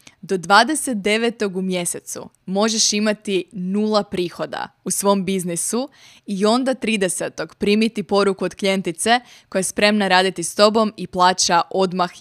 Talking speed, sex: 135 wpm, female